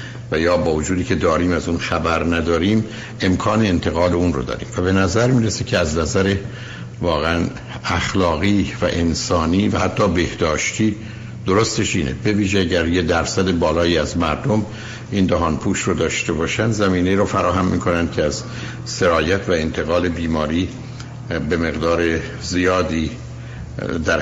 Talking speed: 140 wpm